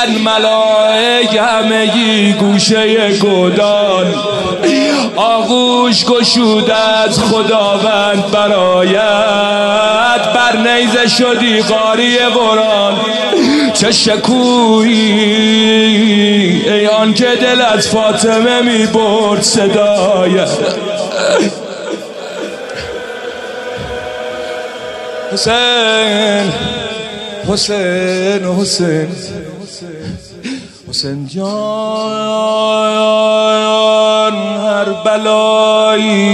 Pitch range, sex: 205-220 Hz, male